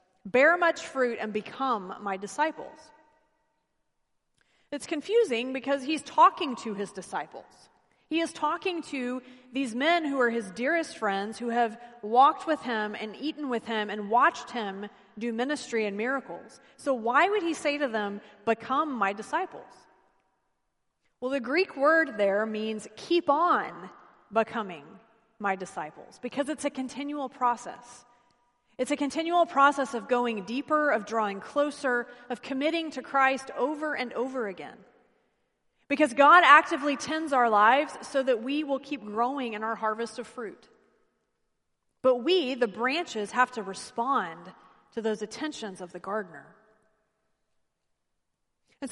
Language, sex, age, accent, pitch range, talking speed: English, female, 30-49, American, 225-295 Hz, 145 wpm